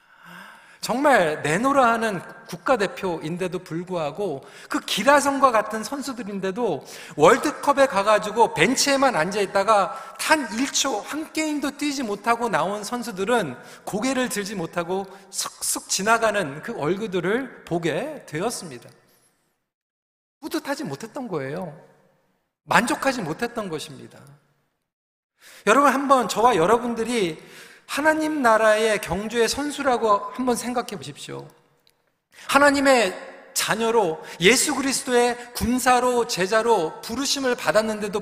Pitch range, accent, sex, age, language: 205-280 Hz, native, male, 40-59, Korean